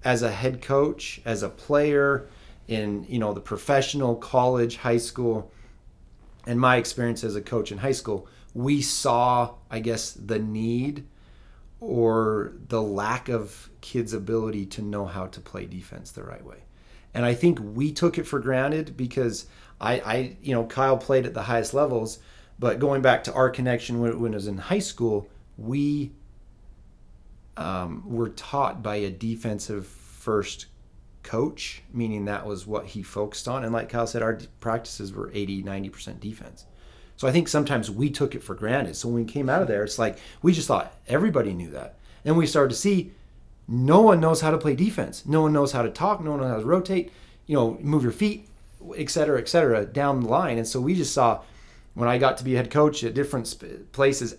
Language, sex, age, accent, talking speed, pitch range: English, male, 30-49, American, 195 wpm, 110-140 Hz